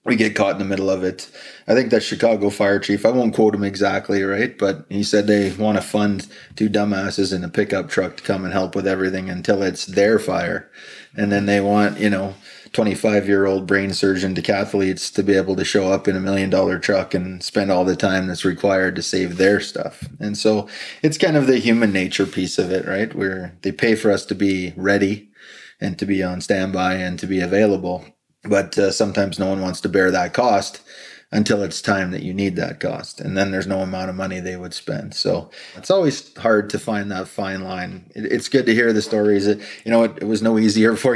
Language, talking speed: English, 225 wpm